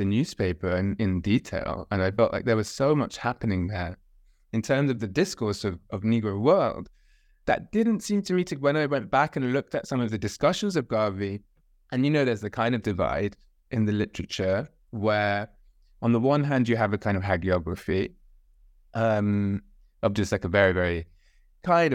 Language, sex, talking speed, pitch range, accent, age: English, male, 200 wpm, 95-120 Hz, British, 20-39